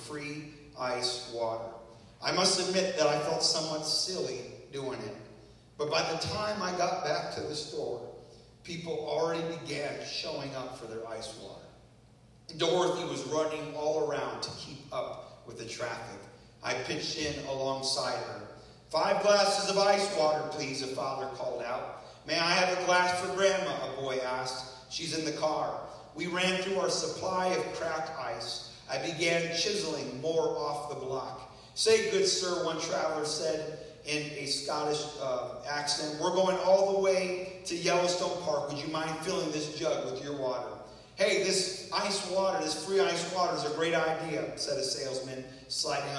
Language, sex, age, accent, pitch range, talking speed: English, male, 40-59, American, 135-175 Hz, 170 wpm